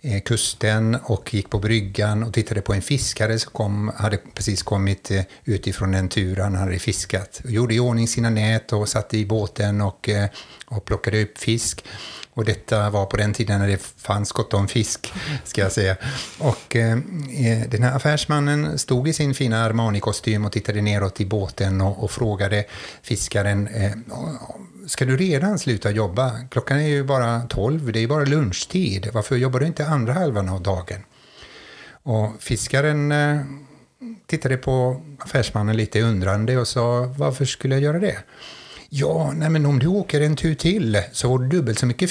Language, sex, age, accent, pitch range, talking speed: Swedish, male, 60-79, native, 105-140 Hz, 170 wpm